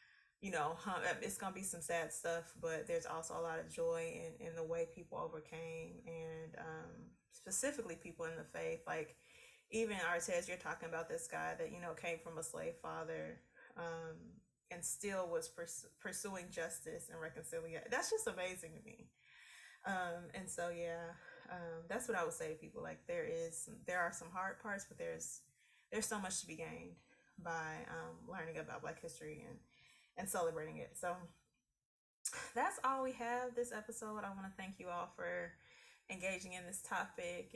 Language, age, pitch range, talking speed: English, 20-39, 170-230 Hz, 185 wpm